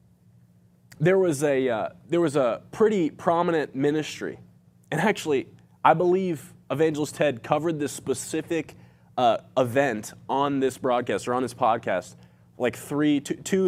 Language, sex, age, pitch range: English, male, 20-39, 110-170 Hz